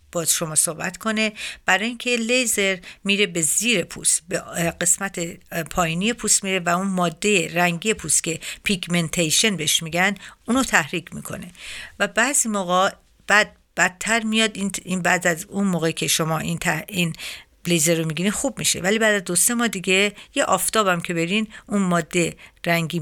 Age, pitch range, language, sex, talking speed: 50-69, 165-210 Hz, Persian, female, 160 wpm